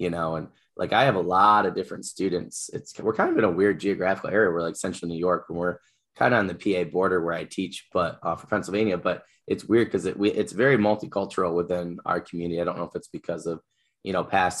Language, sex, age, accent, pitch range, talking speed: English, male, 10-29, American, 85-100 Hz, 260 wpm